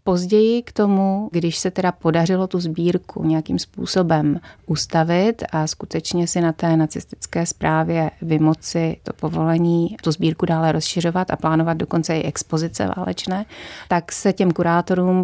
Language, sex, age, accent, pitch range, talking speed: Czech, female, 30-49, native, 155-175 Hz, 140 wpm